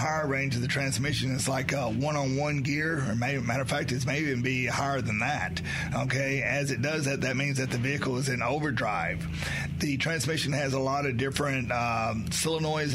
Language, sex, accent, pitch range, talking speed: English, male, American, 130-150 Hz, 205 wpm